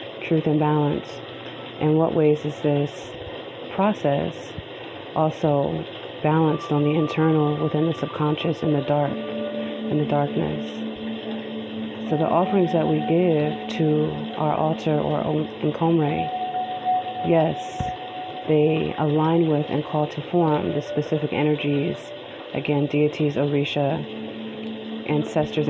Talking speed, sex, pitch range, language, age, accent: 115 wpm, female, 140-155 Hz, English, 30-49, American